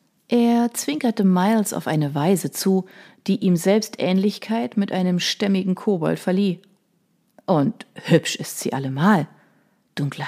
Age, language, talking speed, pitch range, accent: 40-59, German, 130 wpm, 165-220 Hz, German